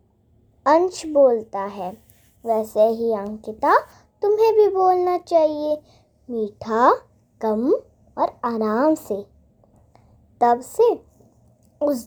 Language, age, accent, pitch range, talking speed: Hindi, 20-39, native, 255-375 Hz, 90 wpm